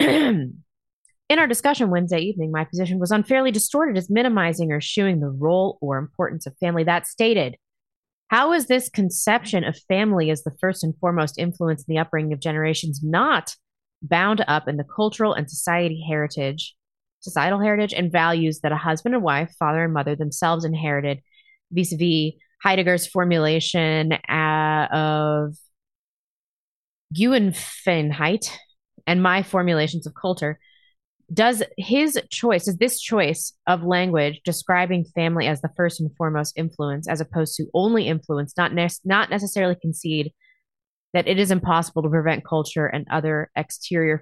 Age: 20-39